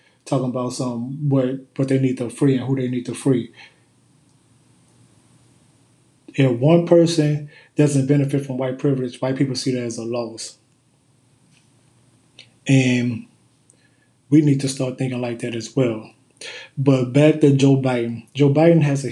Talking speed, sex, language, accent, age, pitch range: 155 wpm, male, English, American, 20-39, 125-140 Hz